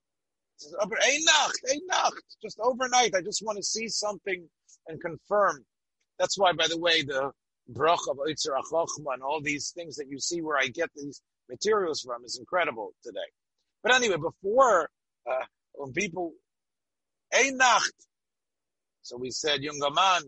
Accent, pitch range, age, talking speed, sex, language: American, 155-220 Hz, 50-69, 140 wpm, male, English